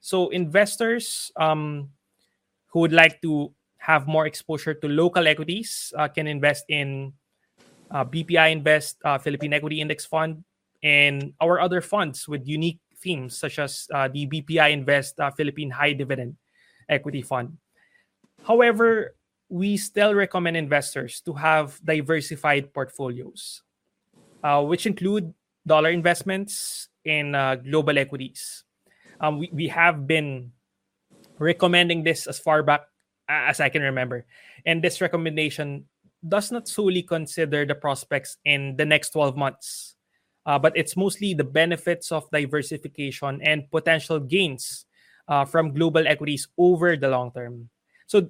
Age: 20-39